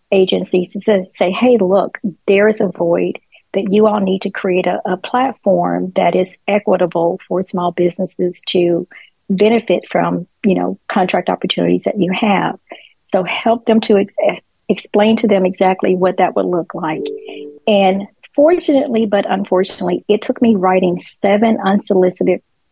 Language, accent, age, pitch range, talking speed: English, American, 40-59, 180-205 Hz, 155 wpm